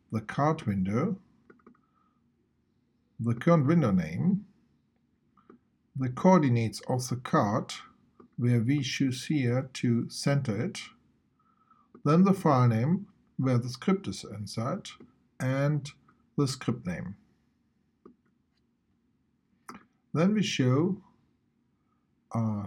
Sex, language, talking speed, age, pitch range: male, English, 95 wpm, 50-69, 115-165 Hz